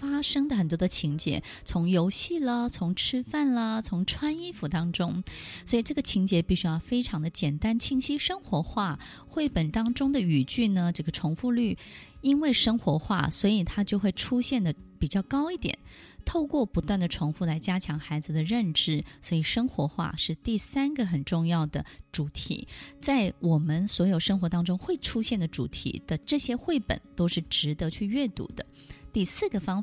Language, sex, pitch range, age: Chinese, female, 165-235 Hz, 20-39